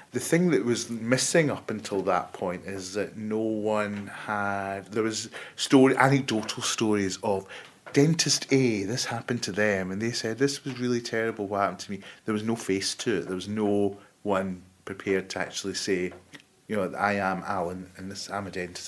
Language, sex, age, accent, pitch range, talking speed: English, male, 30-49, British, 95-110 Hz, 190 wpm